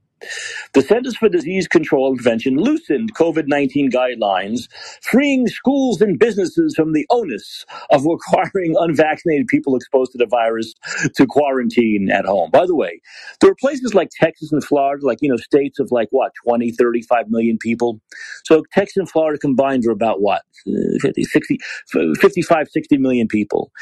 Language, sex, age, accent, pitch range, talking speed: English, male, 50-69, American, 125-185 Hz, 160 wpm